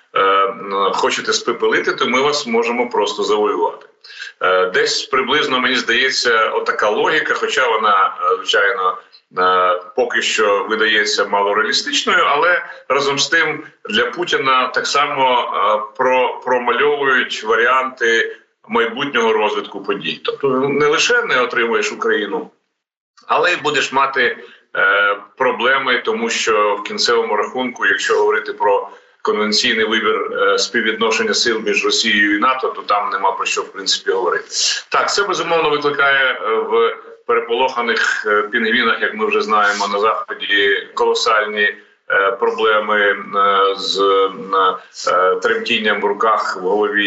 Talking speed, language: 120 wpm, Ukrainian